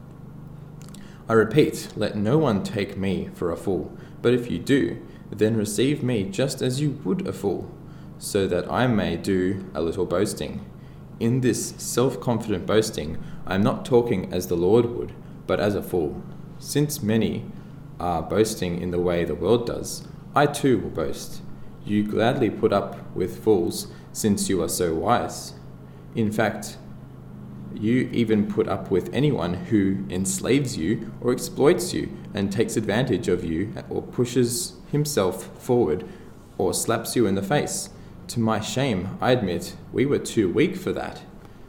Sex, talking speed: male, 165 wpm